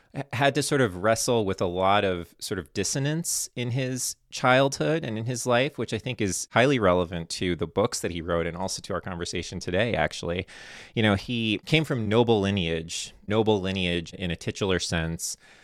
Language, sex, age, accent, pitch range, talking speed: English, male, 30-49, American, 90-115 Hz, 195 wpm